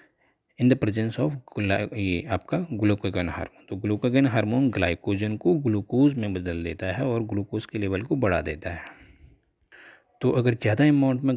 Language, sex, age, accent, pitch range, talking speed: Hindi, male, 20-39, native, 100-125 Hz, 170 wpm